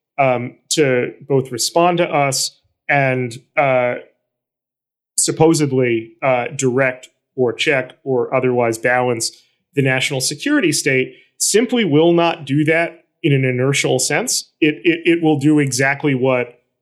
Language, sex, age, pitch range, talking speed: English, male, 30-49, 130-160 Hz, 130 wpm